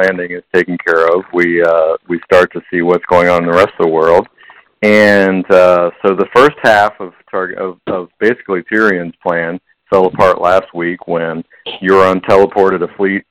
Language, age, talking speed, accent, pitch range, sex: English, 50-69, 190 wpm, American, 85-100 Hz, male